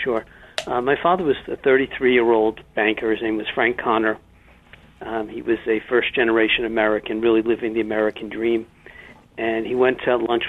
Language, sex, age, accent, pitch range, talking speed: English, male, 60-79, American, 110-120 Hz, 165 wpm